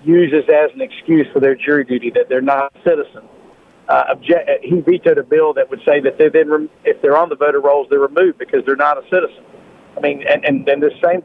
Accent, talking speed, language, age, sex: American, 240 wpm, English, 50-69, male